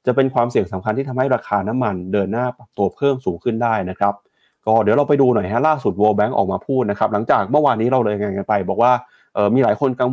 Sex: male